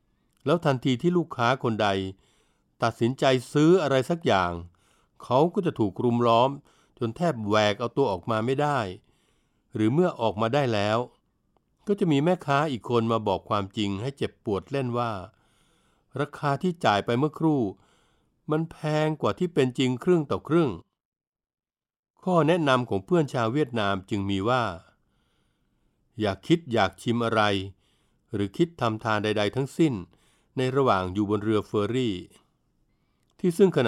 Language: Thai